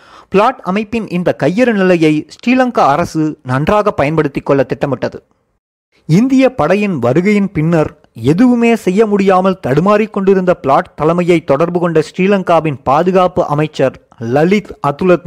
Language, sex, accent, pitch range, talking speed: Tamil, male, native, 155-205 Hz, 105 wpm